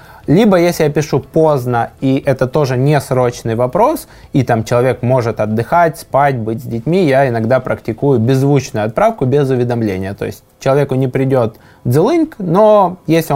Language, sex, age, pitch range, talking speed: Russian, male, 20-39, 115-145 Hz, 155 wpm